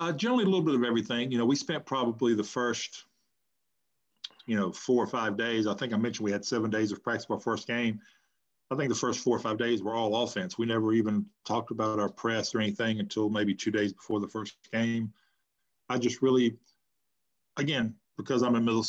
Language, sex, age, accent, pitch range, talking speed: English, male, 50-69, American, 105-115 Hz, 220 wpm